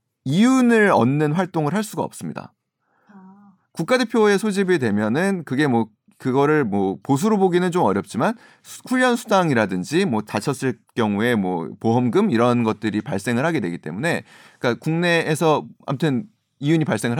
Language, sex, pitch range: Korean, male, 120-200 Hz